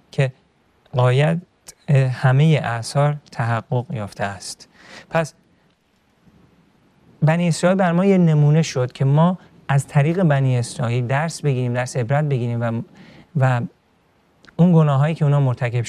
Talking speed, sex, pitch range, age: 125 wpm, male, 125-160 Hz, 40-59